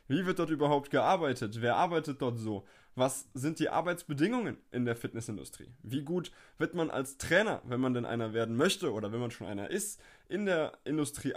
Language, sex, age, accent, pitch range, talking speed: German, male, 20-39, German, 120-150 Hz, 195 wpm